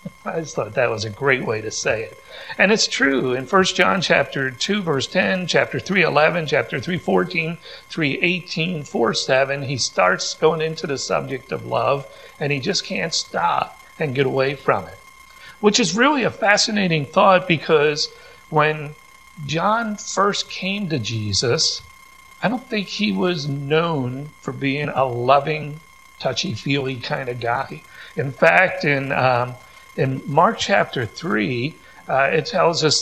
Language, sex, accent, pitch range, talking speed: English, male, American, 135-190 Hz, 160 wpm